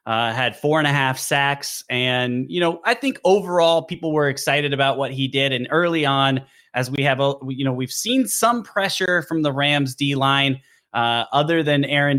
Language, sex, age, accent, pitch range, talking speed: English, male, 30-49, American, 130-155 Hz, 200 wpm